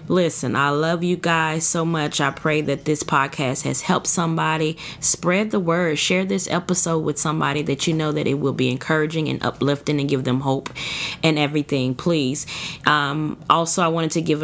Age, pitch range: 20-39, 140-170 Hz